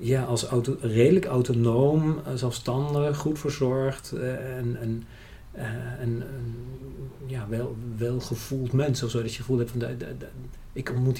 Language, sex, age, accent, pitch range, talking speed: Dutch, male, 40-59, Dutch, 110-125 Hz, 135 wpm